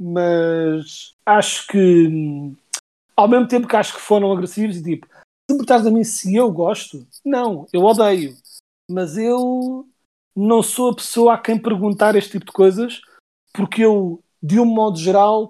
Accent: Portuguese